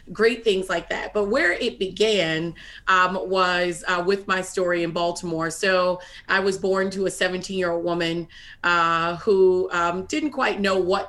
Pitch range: 170-190 Hz